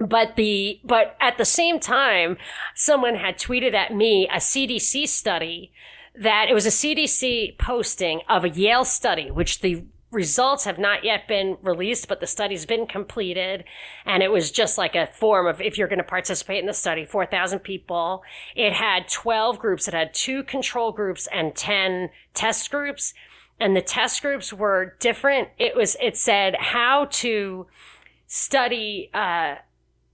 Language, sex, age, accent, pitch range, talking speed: English, female, 40-59, American, 180-235 Hz, 165 wpm